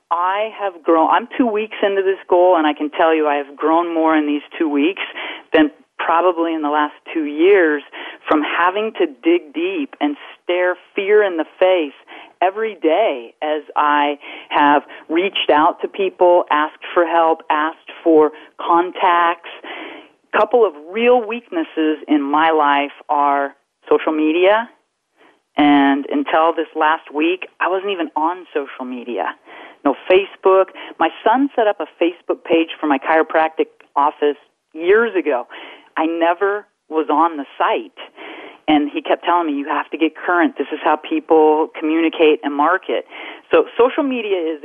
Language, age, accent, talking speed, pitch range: English, 40-59, American, 160 wpm, 150-215 Hz